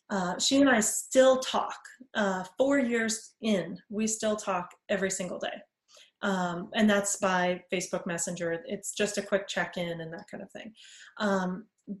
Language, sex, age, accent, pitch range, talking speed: English, female, 30-49, American, 195-235 Hz, 165 wpm